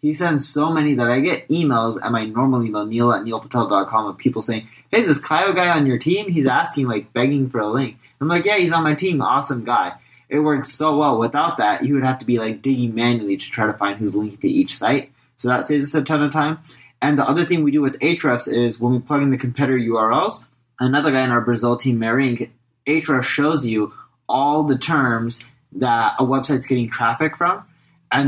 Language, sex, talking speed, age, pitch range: English, male, 230 wpm, 20-39, 110-140 Hz